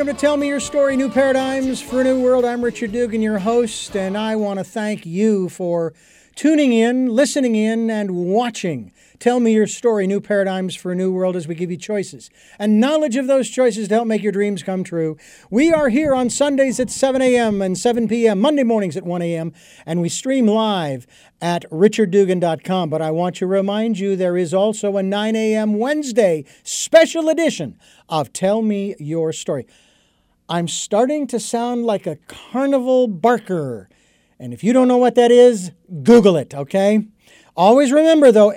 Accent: American